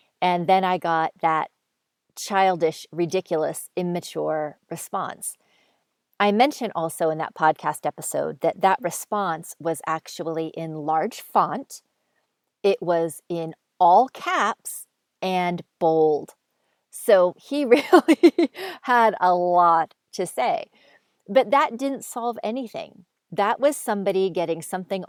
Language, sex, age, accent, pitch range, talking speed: English, female, 40-59, American, 165-225 Hz, 115 wpm